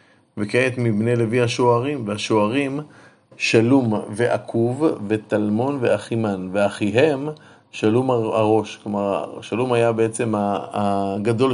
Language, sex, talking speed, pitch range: Hebrew, male, 90 wpm, 110-135 Hz